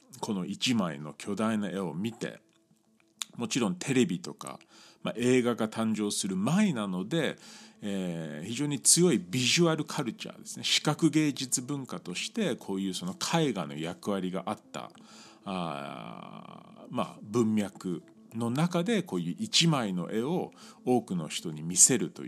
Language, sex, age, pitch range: Japanese, male, 40-59, 100-170 Hz